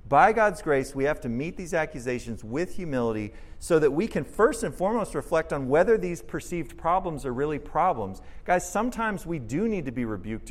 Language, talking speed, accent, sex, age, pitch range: English, 200 wpm, American, male, 40-59, 125-205 Hz